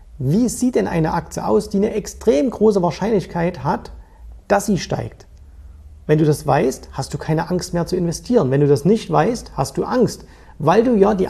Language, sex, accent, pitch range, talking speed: German, male, German, 145-205 Hz, 200 wpm